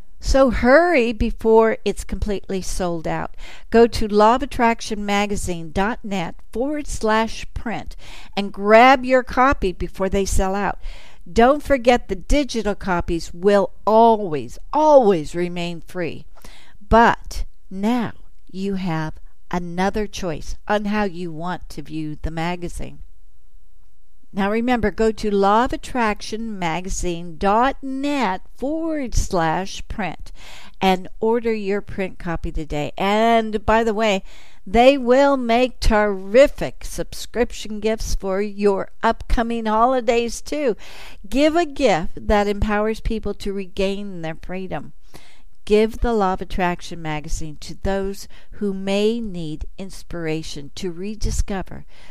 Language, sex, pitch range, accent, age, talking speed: English, female, 175-230 Hz, American, 60-79, 115 wpm